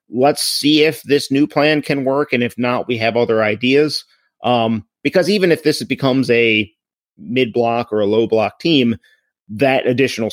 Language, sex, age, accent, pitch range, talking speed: English, male, 30-49, American, 110-130 Hz, 180 wpm